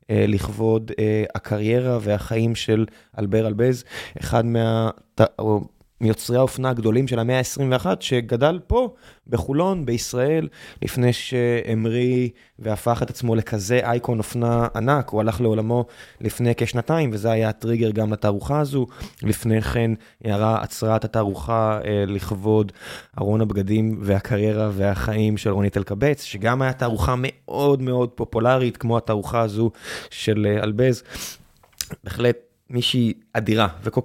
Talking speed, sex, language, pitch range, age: 120 wpm, male, Hebrew, 105-125 Hz, 20-39